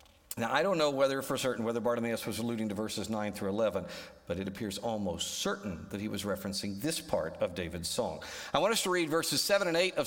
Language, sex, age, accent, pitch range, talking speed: English, male, 50-69, American, 100-140 Hz, 240 wpm